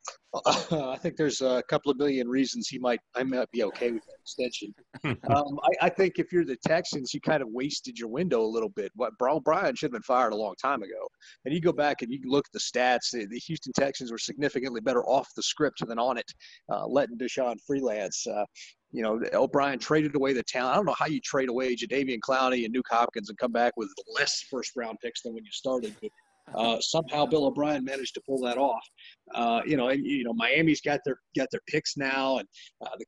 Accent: American